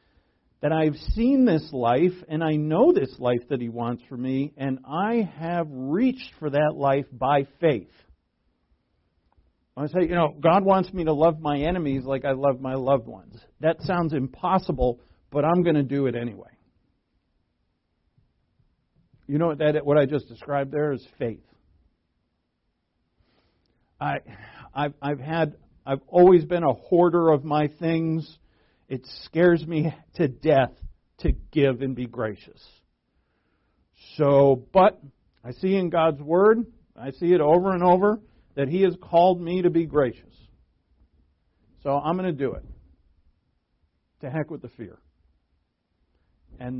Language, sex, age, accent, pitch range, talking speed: English, male, 50-69, American, 115-165 Hz, 150 wpm